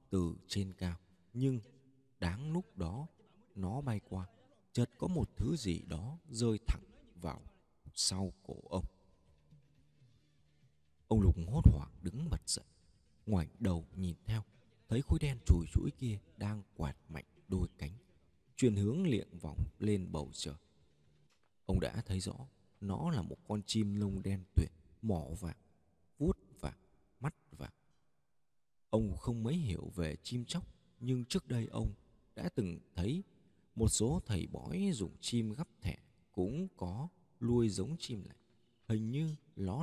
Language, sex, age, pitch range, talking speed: Vietnamese, male, 20-39, 90-125 Hz, 150 wpm